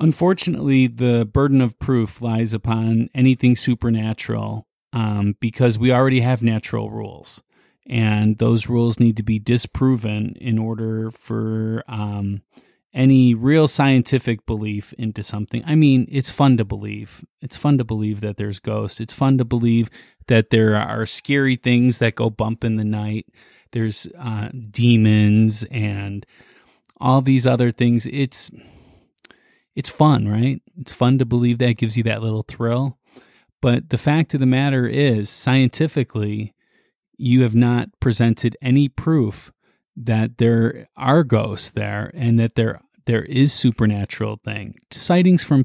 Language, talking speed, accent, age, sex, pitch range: English, 150 wpm, American, 30-49, male, 110-130 Hz